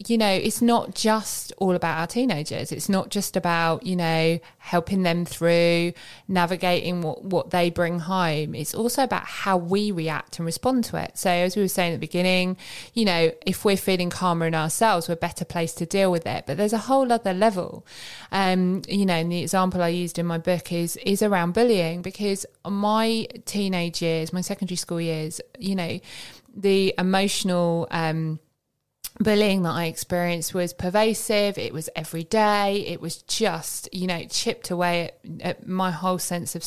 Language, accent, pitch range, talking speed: English, British, 170-205 Hz, 185 wpm